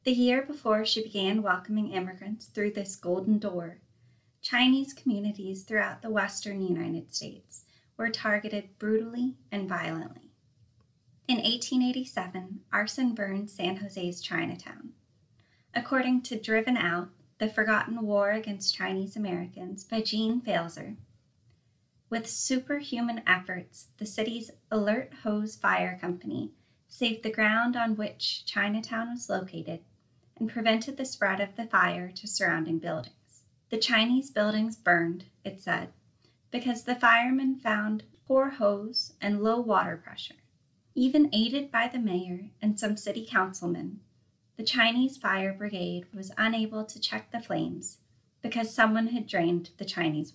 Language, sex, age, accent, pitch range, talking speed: English, female, 20-39, American, 180-230 Hz, 130 wpm